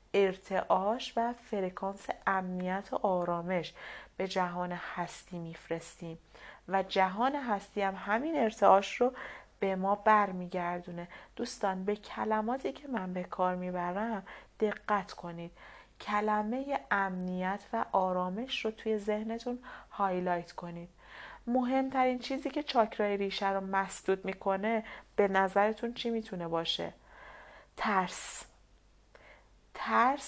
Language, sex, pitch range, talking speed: Persian, female, 185-220 Hz, 105 wpm